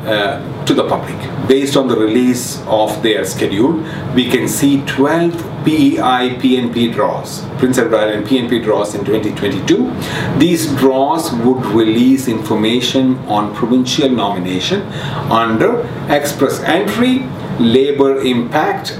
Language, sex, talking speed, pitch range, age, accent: English, male, 120 wpm, 120-150 Hz, 40-59, Indian